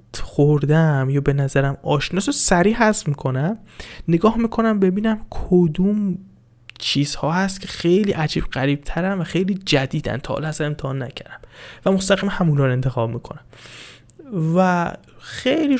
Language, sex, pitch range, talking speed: Persian, male, 145-195 Hz, 120 wpm